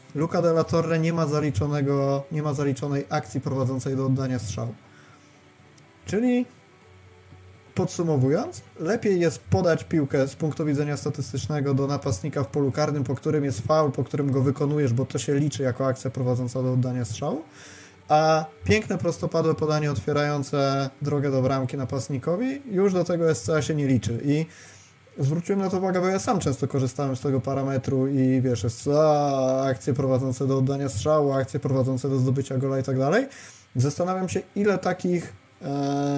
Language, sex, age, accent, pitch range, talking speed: Polish, male, 20-39, native, 130-155 Hz, 160 wpm